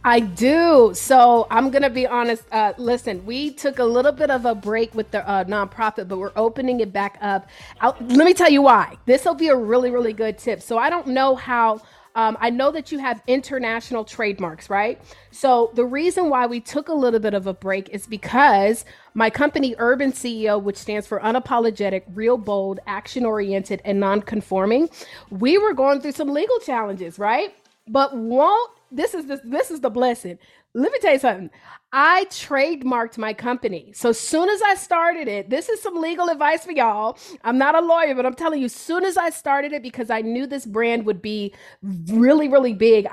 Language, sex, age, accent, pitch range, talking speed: English, female, 30-49, American, 215-280 Hz, 200 wpm